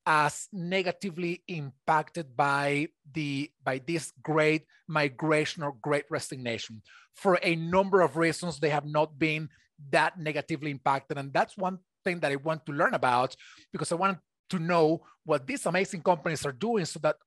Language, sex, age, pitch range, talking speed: English, male, 30-49, 150-180 Hz, 160 wpm